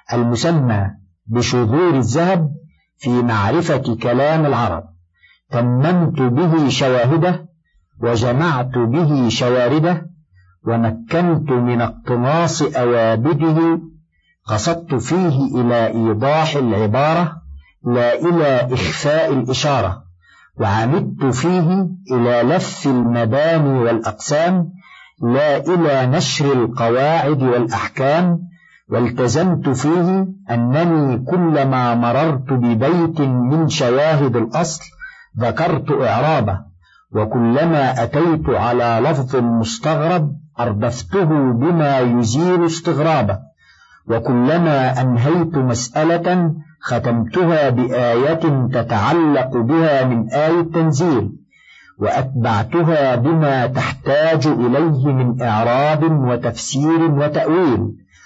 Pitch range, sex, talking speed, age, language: 120-165 Hz, male, 75 wpm, 50-69, Arabic